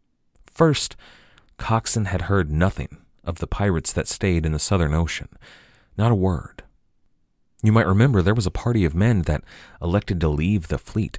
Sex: male